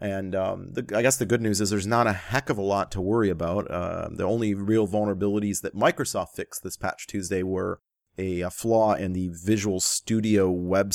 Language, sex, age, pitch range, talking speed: English, male, 30-49, 90-110 Hz, 215 wpm